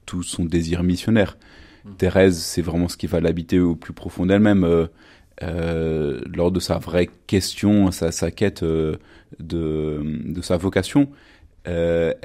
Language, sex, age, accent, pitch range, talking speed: French, male, 30-49, French, 85-100 Hz, 150 wpm